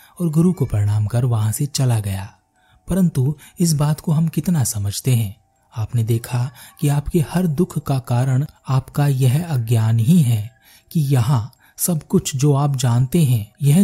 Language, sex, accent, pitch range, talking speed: Hindi, male, native, 115-150 Hz, 170 wpm